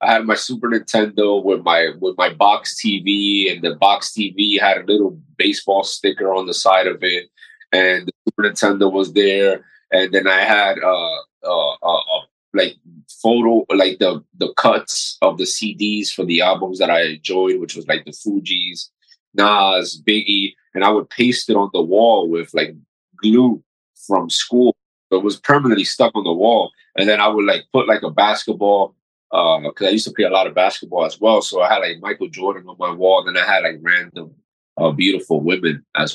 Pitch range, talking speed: 90-110 Hz, 200 wpm